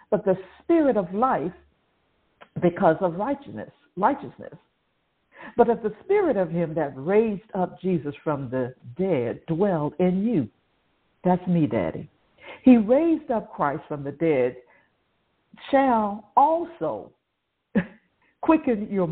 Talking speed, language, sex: 120 wpm, English, female